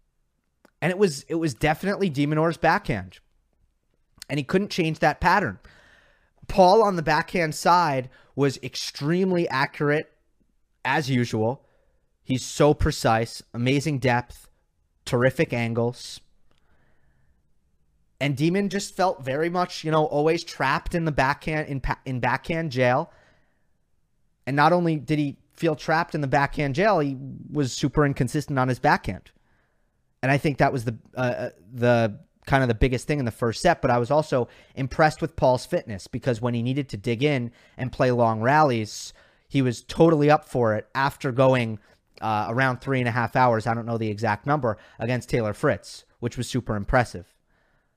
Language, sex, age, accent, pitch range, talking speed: English, male, 30-49, American, 120-155 Hz, 165 wpm